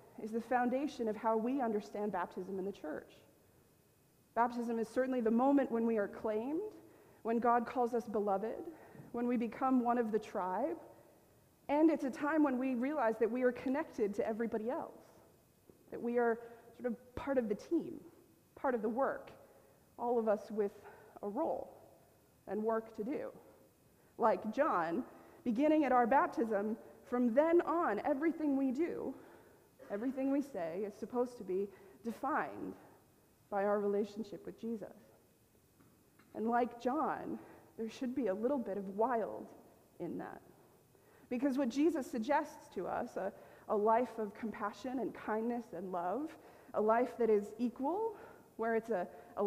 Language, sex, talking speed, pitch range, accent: English, female, 160 wpm, 215-260 Hz, American